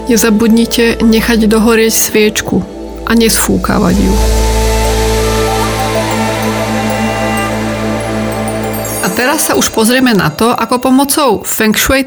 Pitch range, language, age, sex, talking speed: 200-240 Hz, Slovak, 30-49, female, 90 wpm